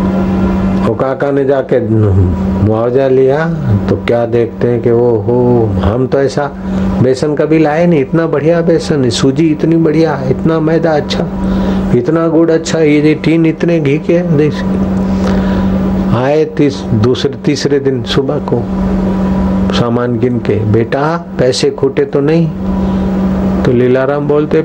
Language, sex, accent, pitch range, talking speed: Hindi, male, native, 150-195 Hz, 130 wpm